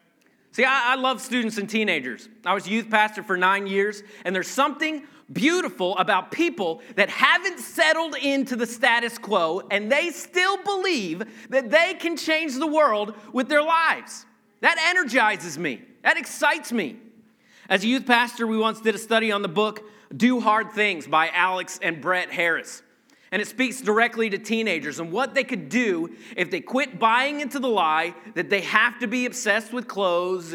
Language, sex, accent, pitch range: English, male, American, 190-255 Hz